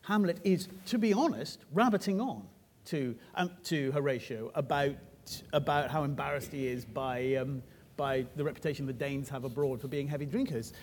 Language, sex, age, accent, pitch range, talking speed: English, male, 40-59, British, 140-190 Hz, 165 wpm